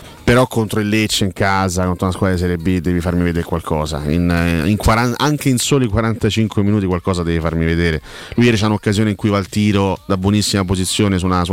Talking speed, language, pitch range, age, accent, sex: 230 wpm, Italian, 90-115 Hz, 30-49, native, male